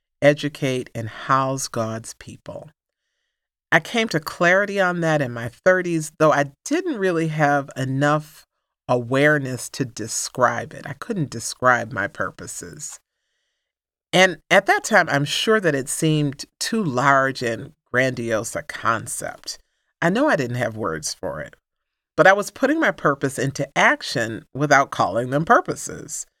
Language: English